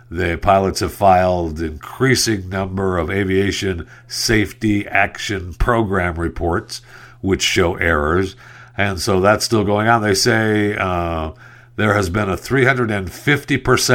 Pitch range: 90-120 Hz